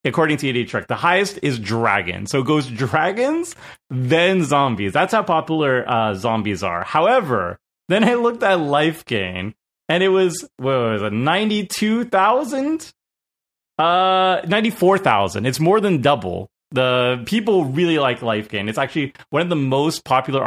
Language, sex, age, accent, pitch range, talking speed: English, male, 30-49, American, 110-160 Hz, 155 wpm